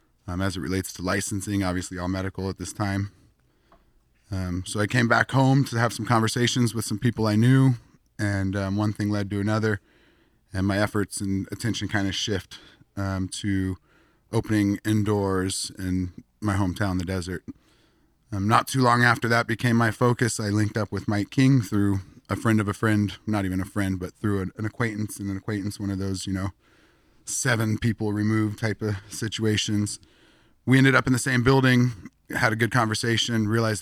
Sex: male